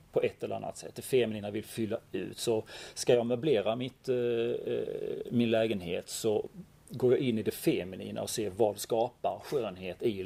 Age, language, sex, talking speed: 40-59, Swedish, male, 180 wpm